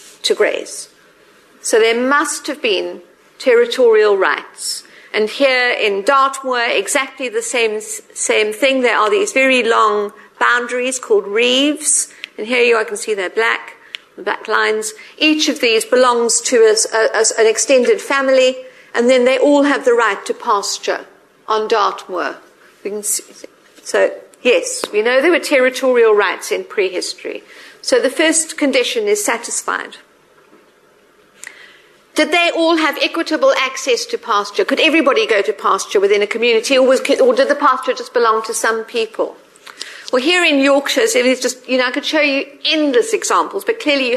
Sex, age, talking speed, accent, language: female, 50-69, 160 wpm, British, English